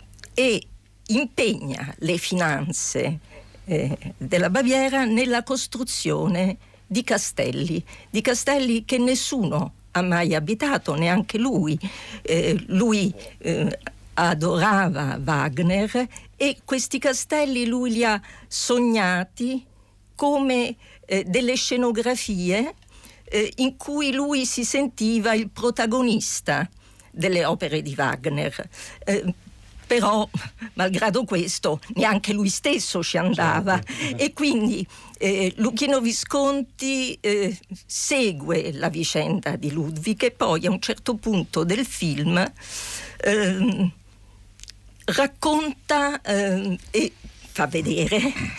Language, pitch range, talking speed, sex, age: Italian, 175-250 Hz, 100 wpm, female, 50-69